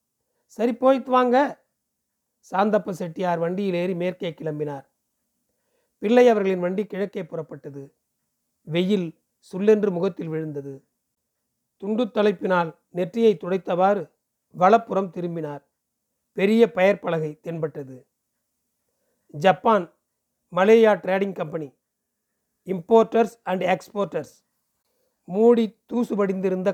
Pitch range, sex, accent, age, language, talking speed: 175-215 Hz, male, native, 40-59, Tamil, 80 wpm